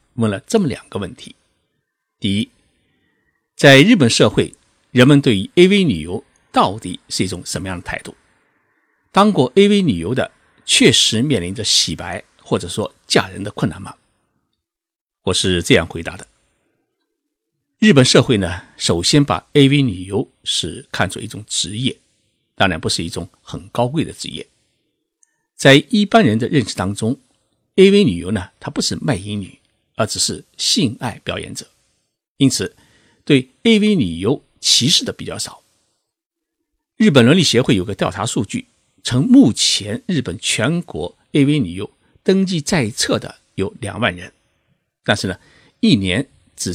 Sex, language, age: male, Chinese, 60-79